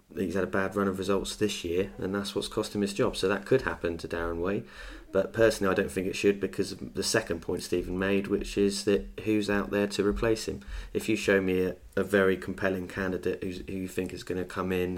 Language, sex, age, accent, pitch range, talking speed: English, male, 20-39, British, 90-100 Hz, 255 wpm